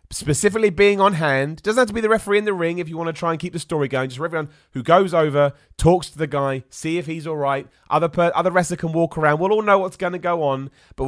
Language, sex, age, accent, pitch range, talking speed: English, male, 30-49, British, 125-180 Hz, 280 wpm